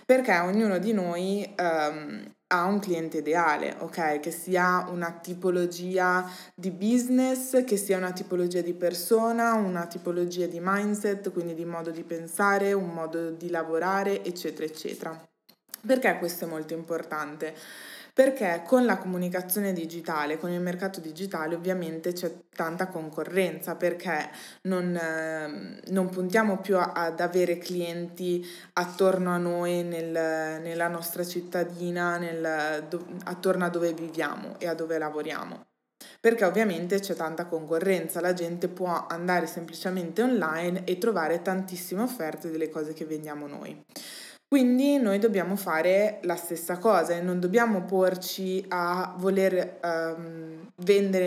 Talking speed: 130 wpm